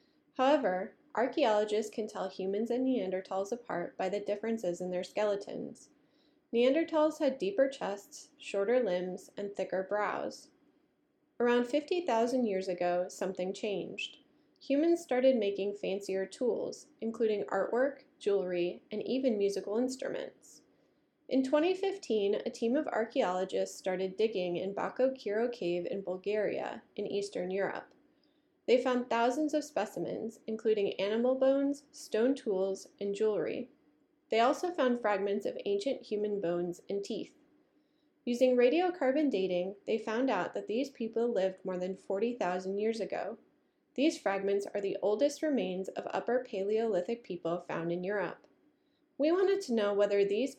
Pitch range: 195-280 Hz